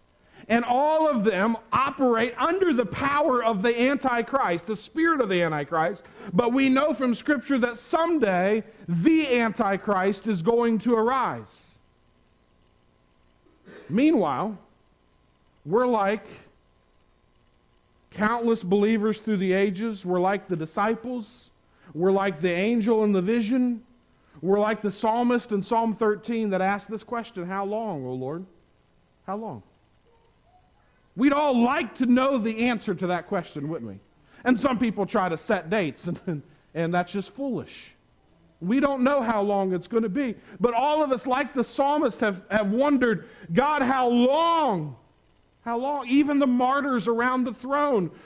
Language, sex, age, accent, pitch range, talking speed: English, male, 50-69, American, 170-245 Hz, 150 wpm